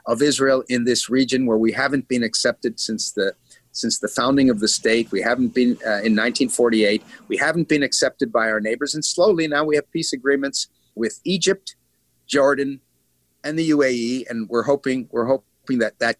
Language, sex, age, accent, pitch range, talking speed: English, male, 50-69, American, 110-140 Hz, 190 wpm